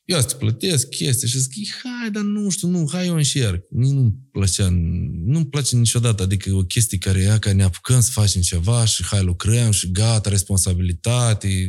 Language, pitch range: Romanian, 100-130 Hz